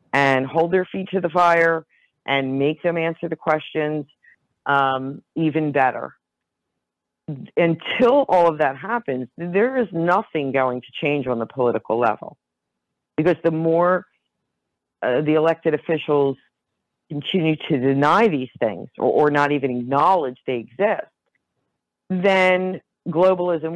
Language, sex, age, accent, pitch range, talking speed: English, female, 40-59, American, 140-175 Hz, 130 wpm